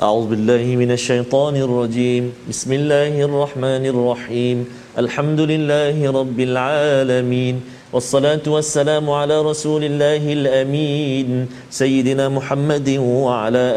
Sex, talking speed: male, 95 wpm